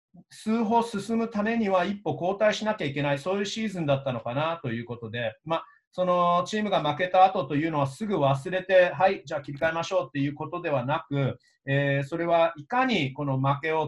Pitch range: 135-185 Hz